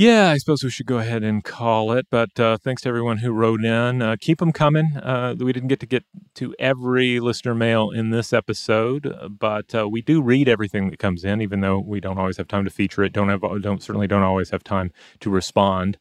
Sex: male